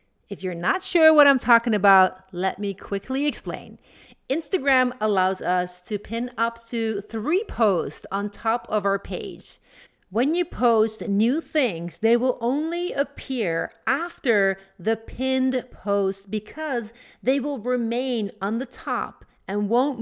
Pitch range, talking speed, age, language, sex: 195-255 Hz, 145 wpm, 40-59, English, female